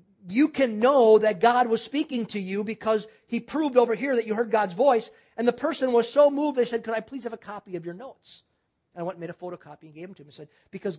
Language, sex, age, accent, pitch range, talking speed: English, male, 50-69, American, 175-260 Hz, 280 wpm